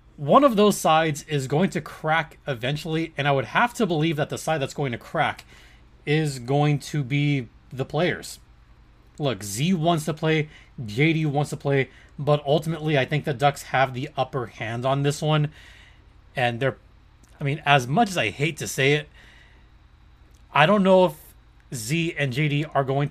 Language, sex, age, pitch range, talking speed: English, male, 30-49, 120-150 Hz, 185 wpm